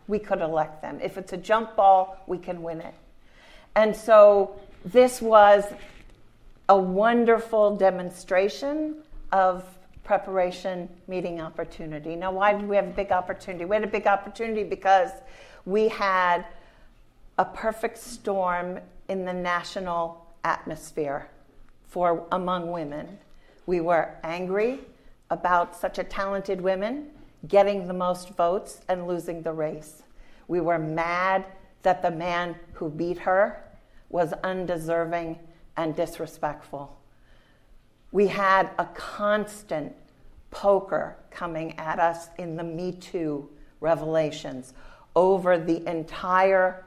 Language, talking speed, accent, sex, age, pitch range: English, 120 wpm, American, female, 50-69, 165-195 Hz